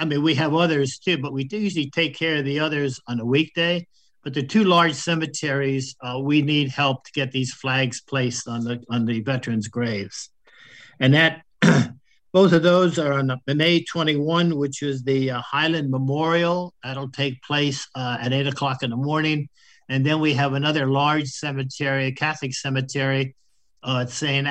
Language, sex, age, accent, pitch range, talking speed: English, male, 60-79, American, 130-160 Hz, 190 wpm